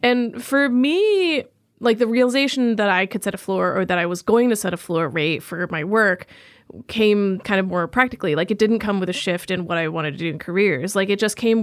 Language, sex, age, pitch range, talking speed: English, female, 20-39, 185-235 Hz, 255 wpm